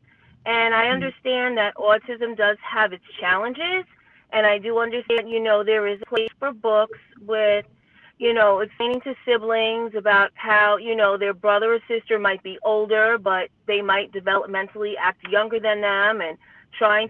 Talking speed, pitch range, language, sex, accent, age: 170 wpm, 210-260 Hz, English, female, American, 30-49